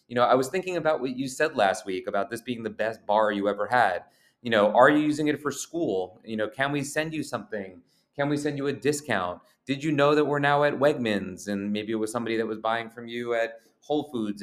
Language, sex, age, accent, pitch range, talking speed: English, male, 30-49, American, 105-130 Hz, 260 wpm